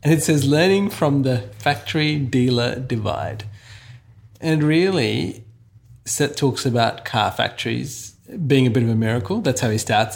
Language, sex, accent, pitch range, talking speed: English, male, Australian, 105-135 Hz, 150 wpm